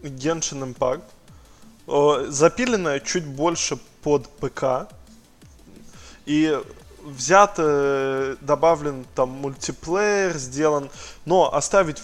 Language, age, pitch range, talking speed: Russian, 20-39, 125-150 Hz, 75 wpm